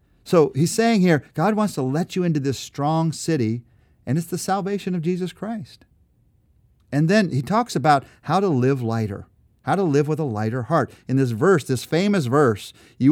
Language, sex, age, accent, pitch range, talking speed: English, male, 40-59, American, 110-150 Hz, 195 wpm